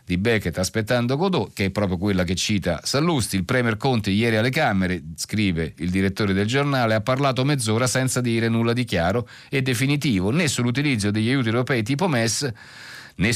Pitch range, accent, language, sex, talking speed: 100-145 Hz, native, Italian, male, 180 wpm